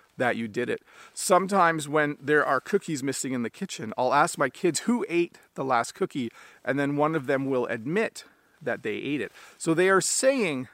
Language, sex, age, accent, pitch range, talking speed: English, male, 40-59, American, 140-195 Hz, 205 wpm